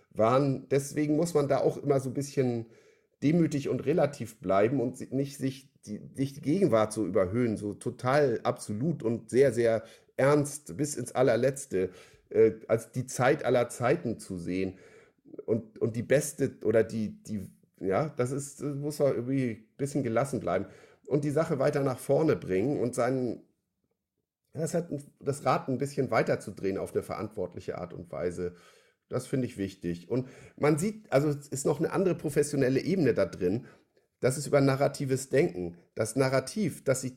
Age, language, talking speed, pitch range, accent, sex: 50-69, German, 175 wpm, 115-145 Hz, German, male